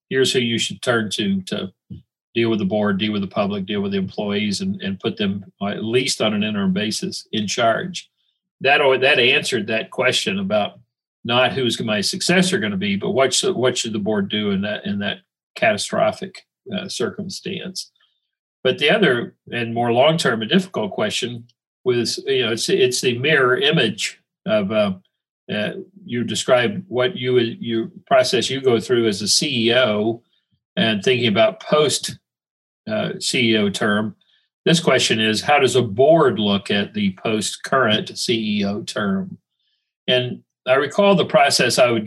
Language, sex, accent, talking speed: English, male, American, 170 wpm